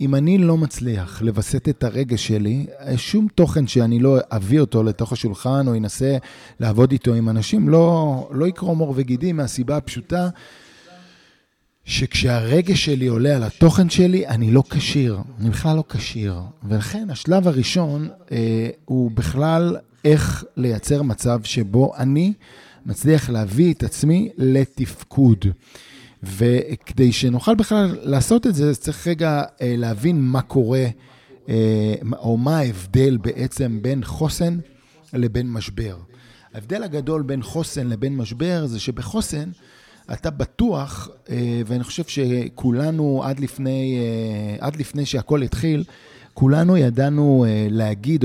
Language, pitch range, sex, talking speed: Hebrew, 120-155 Hz, male, 120 wpm